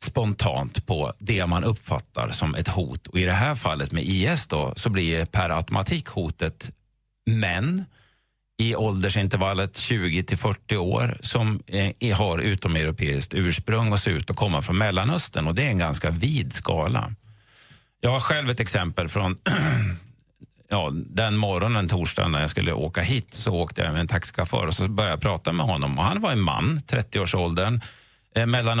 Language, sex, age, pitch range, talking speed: Swedish, male, 40-59, 90-120 Hz, 170 wpm